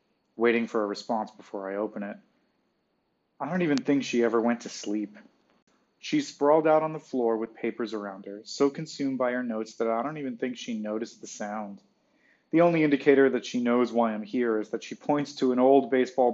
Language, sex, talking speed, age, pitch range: English, male, 215 wpm, 30-49, 110-140 Hz